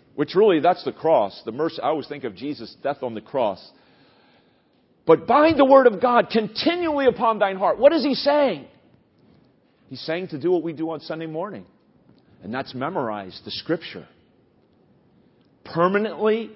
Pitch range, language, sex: 165-250 Hz, English, male